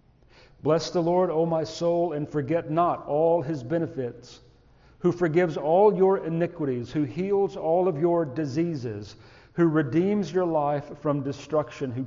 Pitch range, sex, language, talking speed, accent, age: 125-160 Hz, male, English, 150 wpm, American, 40-59